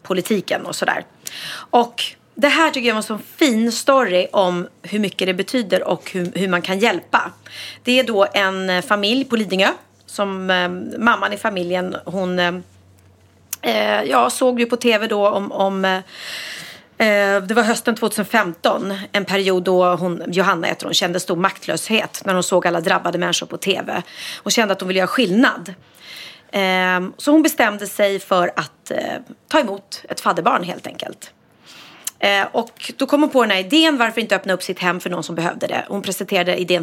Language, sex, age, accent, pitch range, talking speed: Swedish, female, 30-49, native, 180-235 Hz, 180 wpm